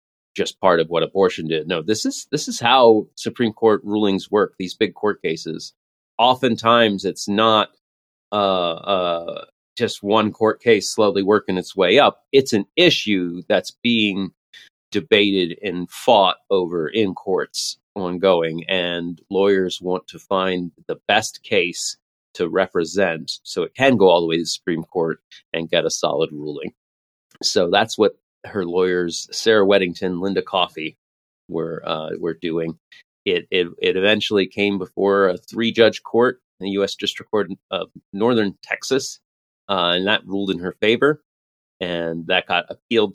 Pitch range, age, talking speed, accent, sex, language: 90-115 Hz, 30-49, 155 wpm, American, male, English